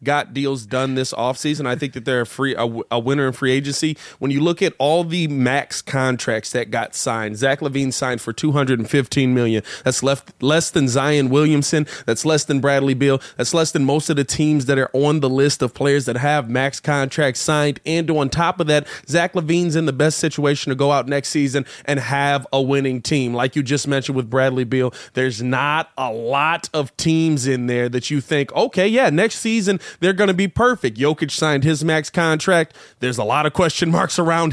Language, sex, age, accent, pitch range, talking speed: English, male, 30-49, American, 130-170 Hz, 215 wpm